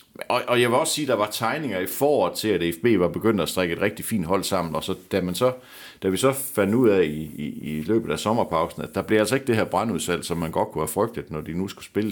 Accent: native